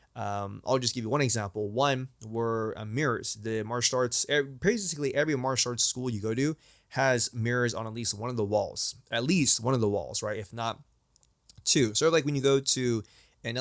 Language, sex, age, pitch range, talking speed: English, male, 20-39, 110-130 Hz, 215 wpm